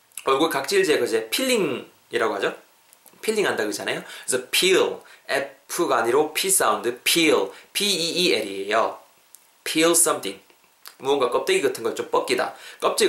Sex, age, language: male, 20-39, Korean